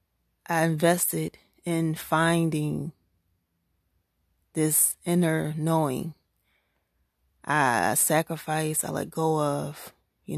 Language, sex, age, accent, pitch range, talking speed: English, female, 20-39, American, 145-170 Hz, 80 wpm